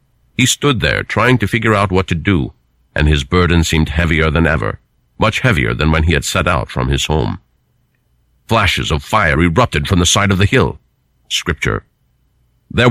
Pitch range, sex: 75-110 Hz, male